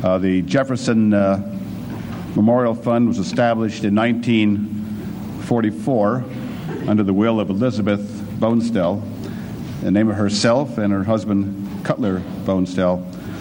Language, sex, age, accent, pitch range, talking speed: English, male, 60-79, American, 105-120 Hz, 115 wpm